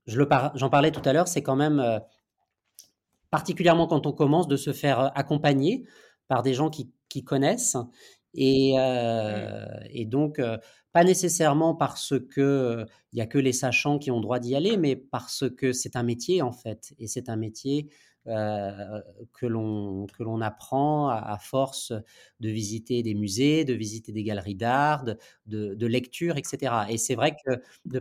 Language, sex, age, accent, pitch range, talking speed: French, male, 30-49, French, 120-145 Hz, 185 wpm